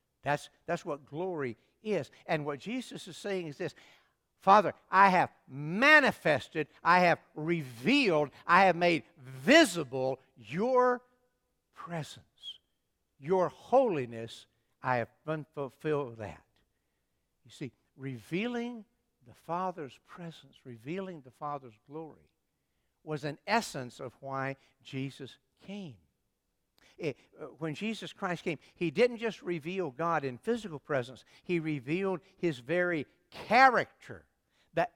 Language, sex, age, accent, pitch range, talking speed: English, male, 60-79, American, 135-195 Hz, 115 wpm